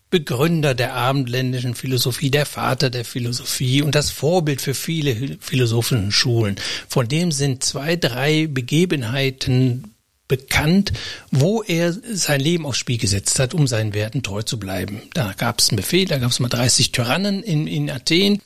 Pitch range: 125-150 Hz